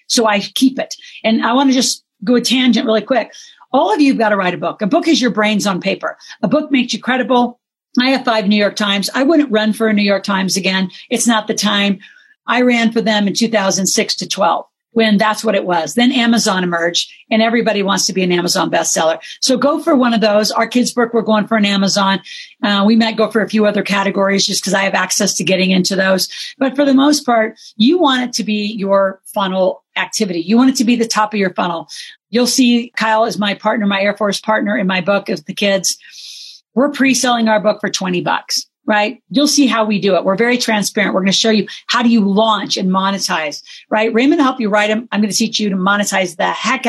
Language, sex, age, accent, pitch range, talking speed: English, female, 50-69, American, 200-240 Hz, 245 wpm